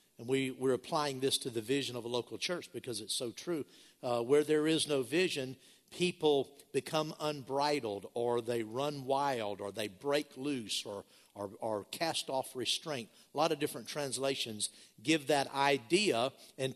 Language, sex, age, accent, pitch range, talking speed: English, male, 50-69, American, 130-165 Hz, 170 wpm